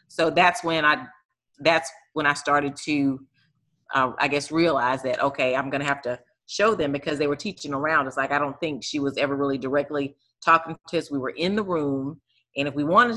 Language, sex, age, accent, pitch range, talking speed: English, female, 30-49, American, 140-170 Hz, 225 wpm